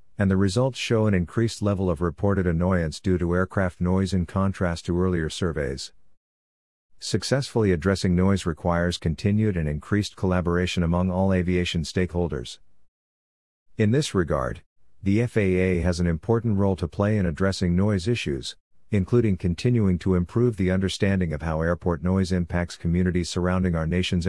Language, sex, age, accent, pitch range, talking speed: English, male, 50-69, American, 85-100 Hz, 150 wpm